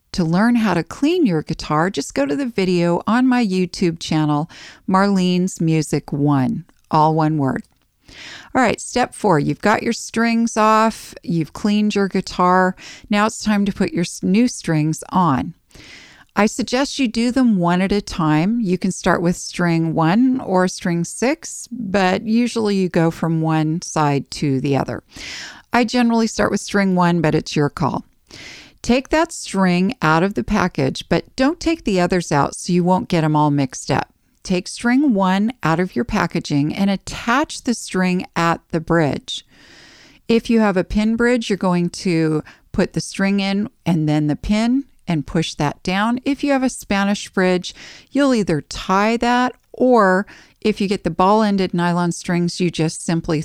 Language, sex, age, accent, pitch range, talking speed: English, female, 40-59, American, 160-220 Hz, 180 wpm